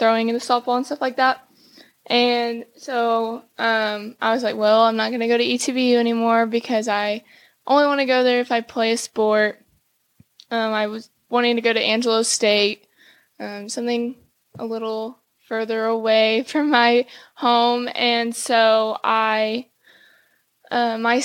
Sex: female